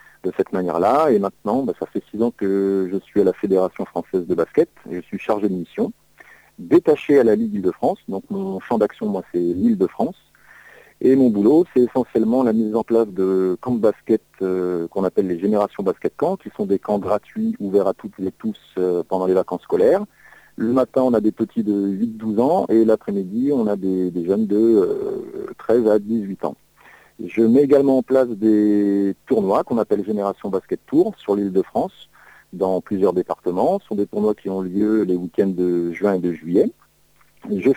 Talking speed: 205 wpm